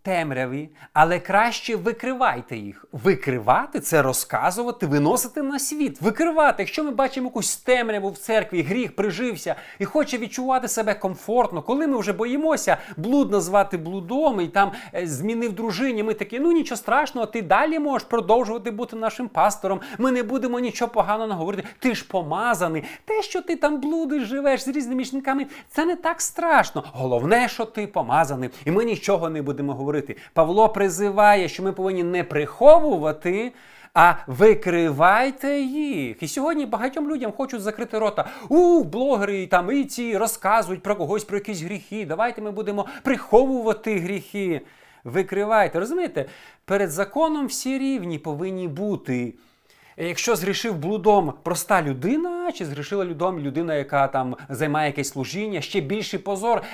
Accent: native